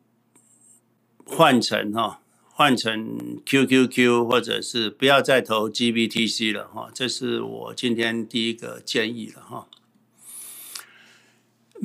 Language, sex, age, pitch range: Chinese, male, 60-79, 110-130 Hz